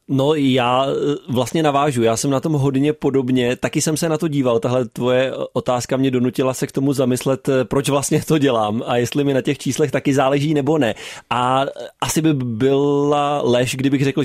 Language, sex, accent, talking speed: Czech, male, native, 195 wpm